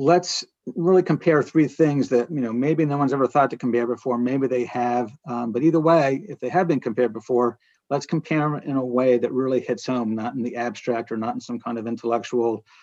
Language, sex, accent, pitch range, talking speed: English, male, American, 120-155 Hz, 235 wpm